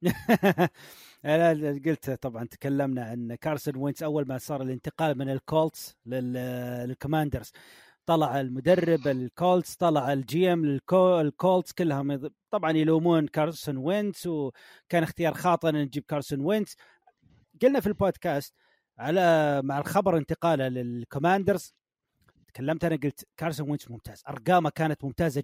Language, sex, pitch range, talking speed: Arabic, male, 145-185 Hz, 110 wpm